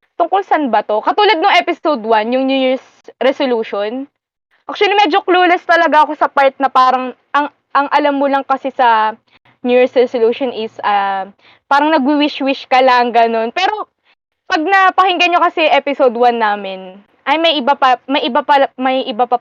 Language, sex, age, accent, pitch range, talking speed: Filipino, female, 20-39, native, 235-295 Hz, 175 wpm